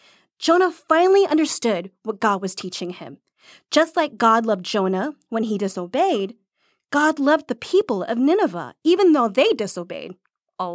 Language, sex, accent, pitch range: English, female, American, 220-330 Hz